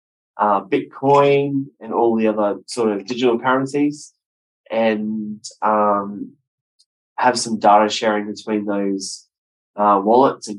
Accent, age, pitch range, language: Australian, 10-29, 95-125 Hz, English